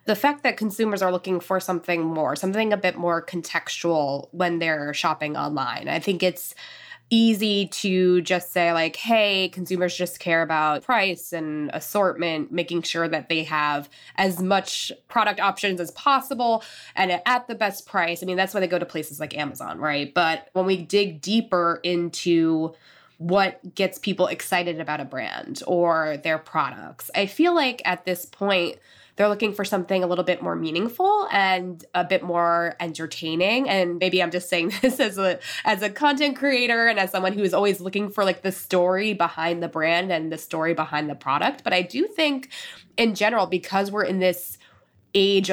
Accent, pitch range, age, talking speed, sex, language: American, 170-210 Hz, 20-39, 185 wpm, female, English